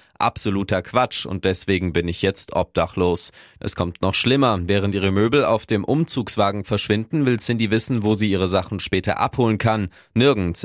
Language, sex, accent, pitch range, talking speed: German, male, German, 90-110 Hz, 170 wpm